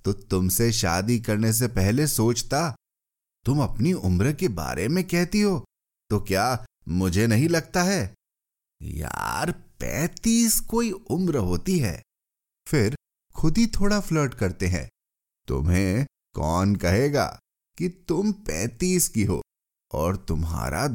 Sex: male